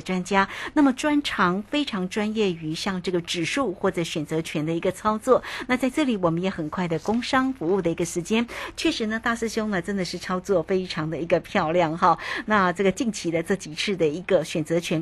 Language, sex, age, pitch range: Chinese, female, 50-69, 170-220 Hz